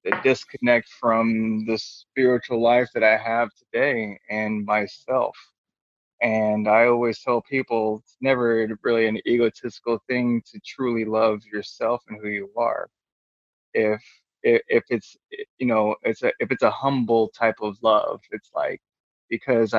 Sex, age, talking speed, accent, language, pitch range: male, 20-39, 150 wpm, American, English, 105-120 Hz